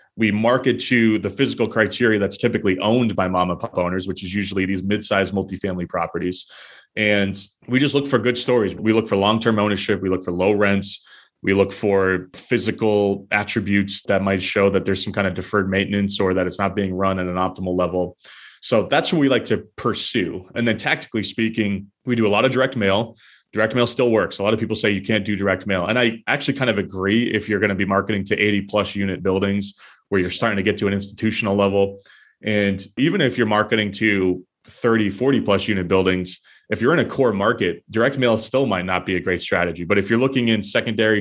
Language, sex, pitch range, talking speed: English, male, 95-110 Hz, 225 wpm